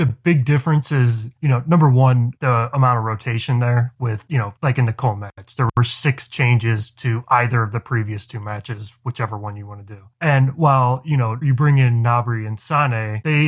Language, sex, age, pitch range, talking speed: English, male, 20-39, 115-140 Hz, 220 wpm